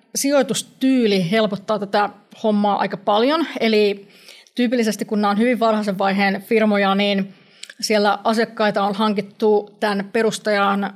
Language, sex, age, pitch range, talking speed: Finnish, female, 30-49, 205-225 Hz, 120 wpm